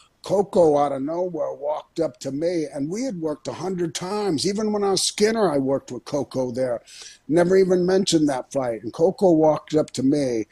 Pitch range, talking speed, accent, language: 145-190 Hz, 205 wpm, American, English